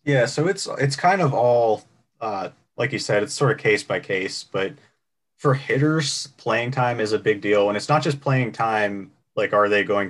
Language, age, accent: English, 20-39, American